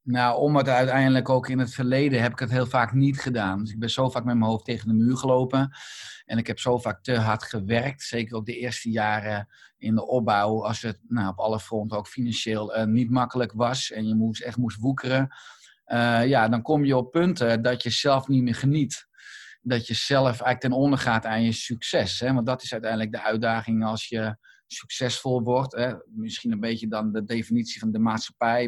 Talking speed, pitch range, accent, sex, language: 210 wpm, 110-130 Hz, Dutch, male, Dutch